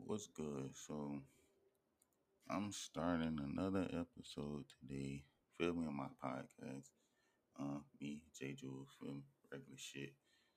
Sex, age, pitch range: male, 20-39, 70-80 Hz